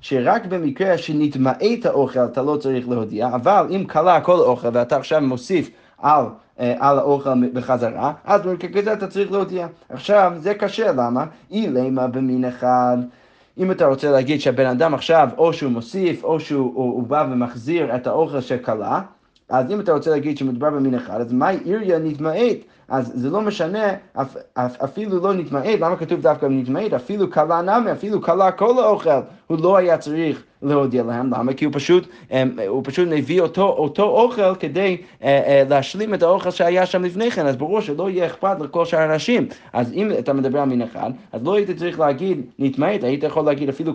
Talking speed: 185 wpm